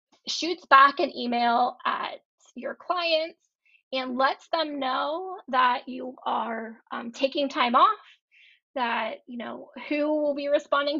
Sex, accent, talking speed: female, American, 135 wpm